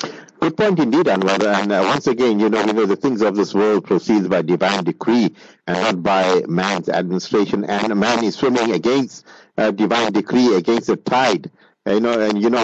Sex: male